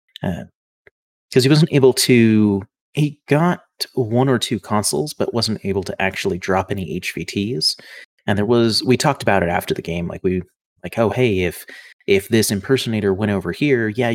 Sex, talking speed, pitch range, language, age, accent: male, 180 wpm, 95-120 Hz, English, 30-49, American